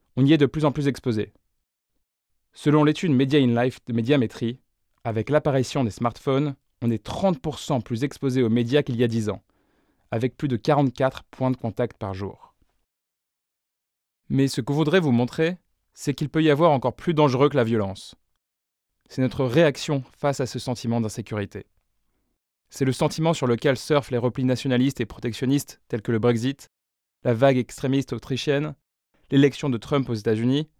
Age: 20-39